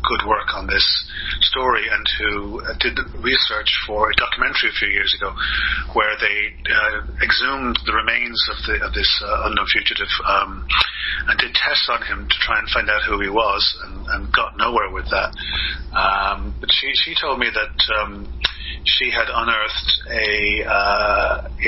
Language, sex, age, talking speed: English, male, 40-59, 175 wpm